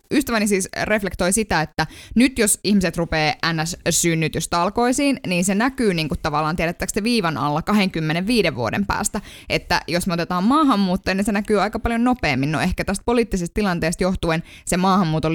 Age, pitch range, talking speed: 20-39, 155-225 Hz, 160 wpm